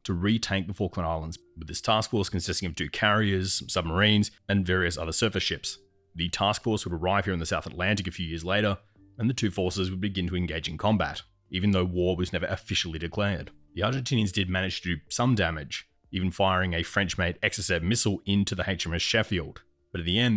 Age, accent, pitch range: 30-49, Australian, 90-105 Hz